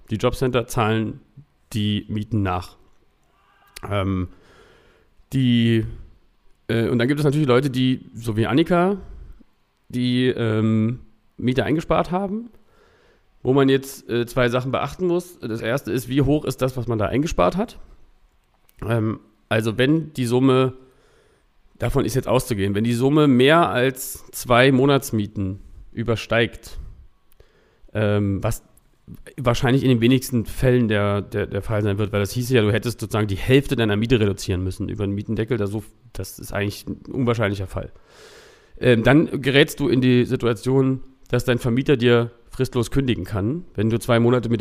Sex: male